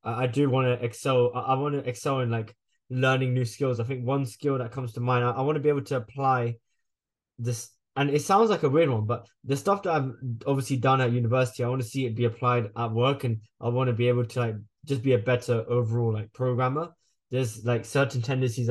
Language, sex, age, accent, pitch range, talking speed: English, male, 10-29, British, 115-130 Hz, 235 wpm